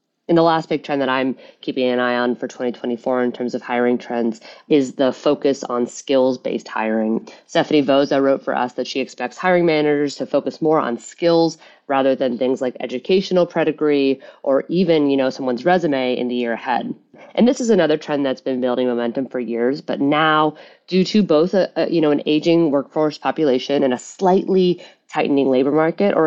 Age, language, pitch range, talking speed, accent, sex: 30-49, English, 130-155 Hz, 195 wpm, American, female